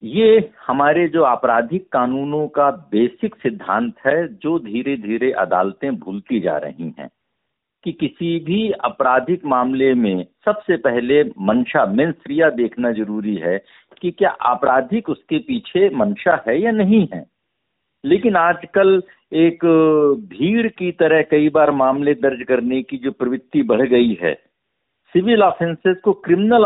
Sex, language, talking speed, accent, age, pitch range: male, Hindi, 135 wpm, native, 60-79, 140-200 Hz